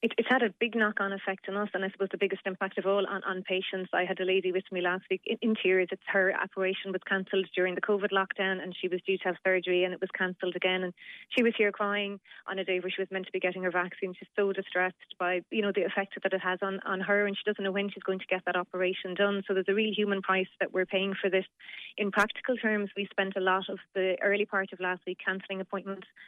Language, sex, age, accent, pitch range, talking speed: English, female, 30-49, Irish, 185-200 Hz, 280 wpm